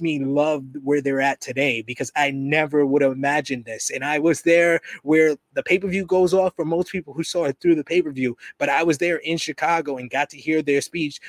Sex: male